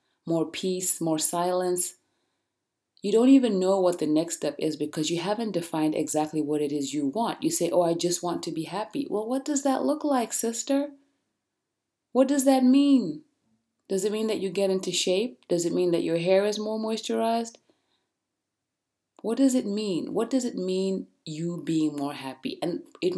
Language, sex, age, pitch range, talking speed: English, female, 30-49, 155-230 Hz, 190 wpm